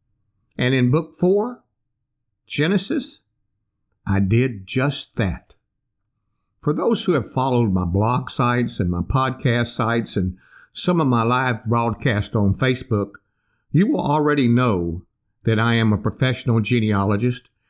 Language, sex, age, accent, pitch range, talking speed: English, male, 60-79, American, 105-145 Hz, 130 wpm